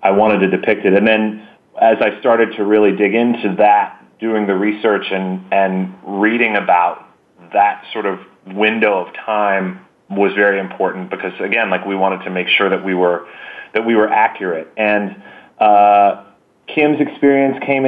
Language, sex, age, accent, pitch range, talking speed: English, male, 30-49, American, 100-115 Hz, 170 wpm